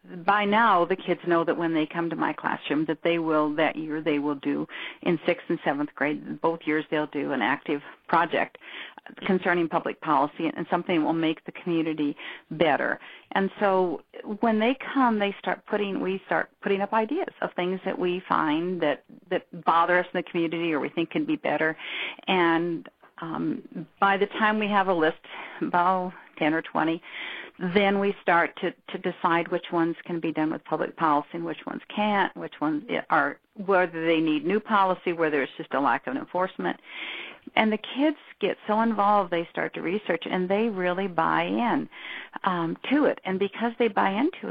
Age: 50-69